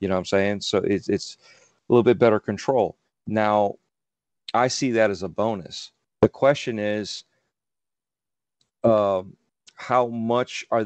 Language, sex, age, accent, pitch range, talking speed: English, male, 40-59, American, 100-125 Hz, 150 wpm